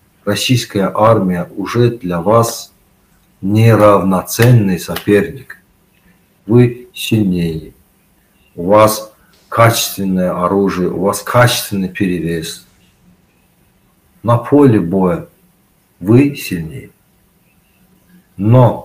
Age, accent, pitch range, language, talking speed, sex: 50-69, native, 100-120 Hz, Ukrainian, 75 wpm, male